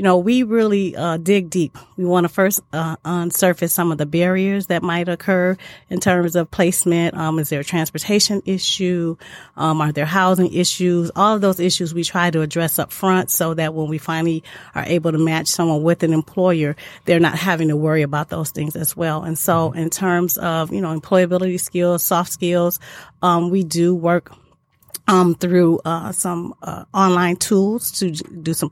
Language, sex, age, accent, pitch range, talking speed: English, female, 30-49, American, 160-185 Hz, 195 wpm